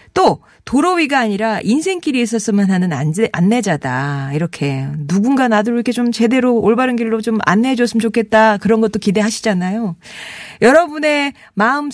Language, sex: Korean, female